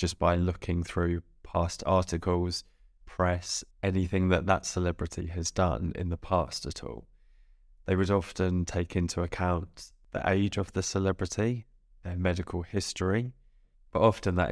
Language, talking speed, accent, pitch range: English, 145 wpm, British, 85-95 Hz